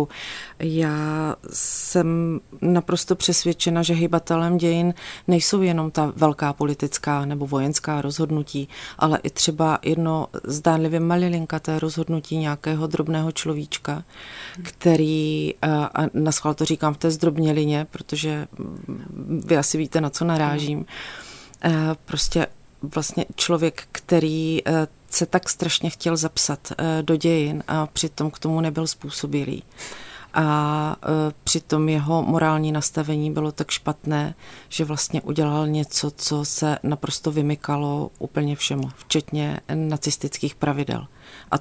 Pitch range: 150-160 Hz